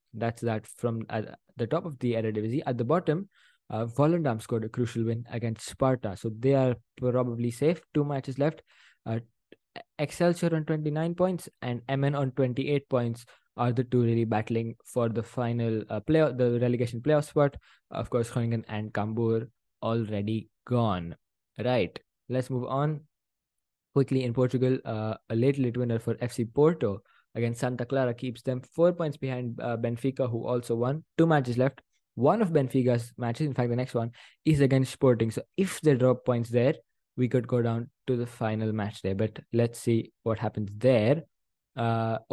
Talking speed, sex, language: 175 wpm, male, English